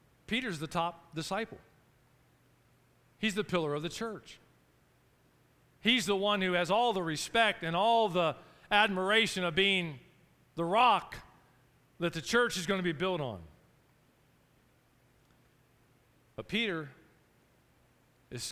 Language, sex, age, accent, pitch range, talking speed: English, male, 40-59, American, 150-225 Hz, 125 wpm